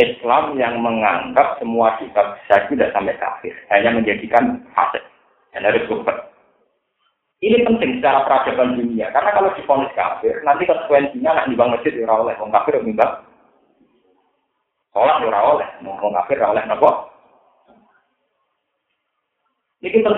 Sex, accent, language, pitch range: male, native, Indonesian, 120-175 Hz